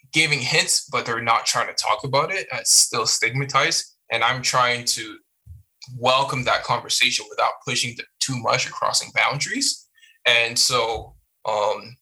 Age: 10-29